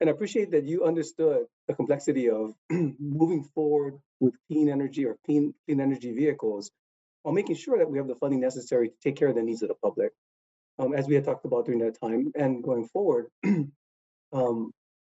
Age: 30-49